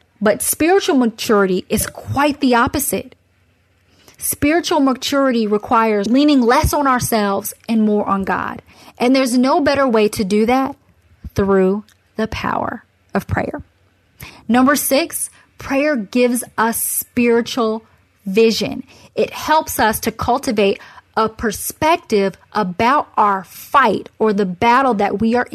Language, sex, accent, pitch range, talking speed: English, female, American, 205-265 Hz, 125 wpm